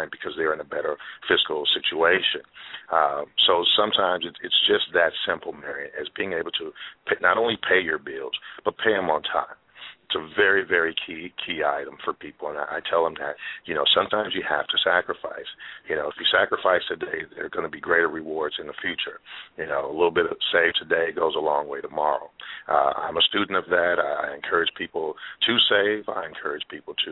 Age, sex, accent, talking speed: 50-69, male, American, 210 wpm